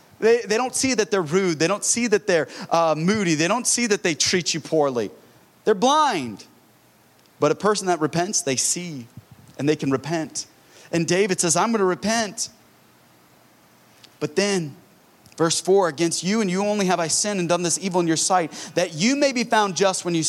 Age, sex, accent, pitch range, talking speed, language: 30-49, male, American, 130-190 Hz, 205 wpm, English